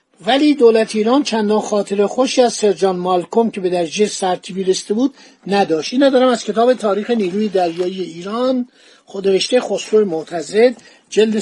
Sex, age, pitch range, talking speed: male, 60-79, 185-245 Hz, 145 wpm